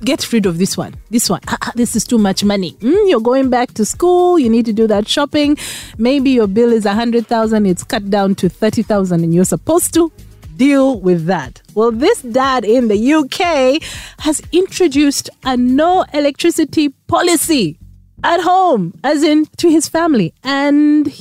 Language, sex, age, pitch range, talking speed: English, female, 30-49, 190-295 Hz, 180 wpm